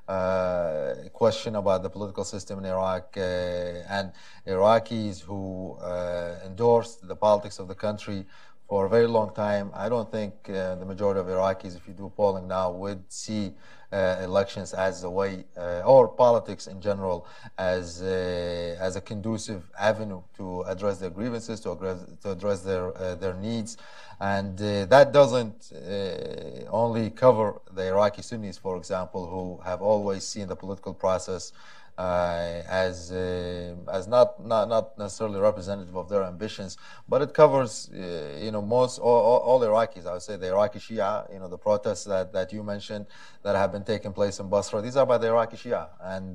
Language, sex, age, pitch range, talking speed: English, male, 30-49, 95-110 Hz, 175 wpm